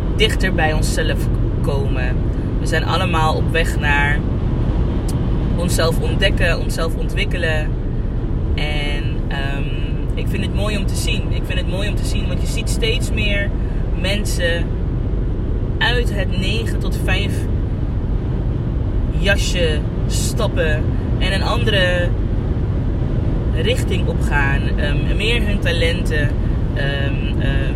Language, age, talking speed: Dutch, 20-39, 110 wpm